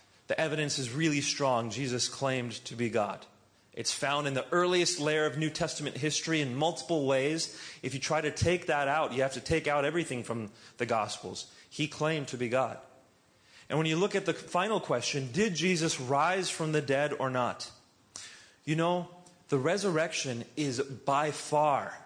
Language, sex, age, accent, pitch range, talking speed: English, male, 30-49, American, 125-165 Hz, 180 wpm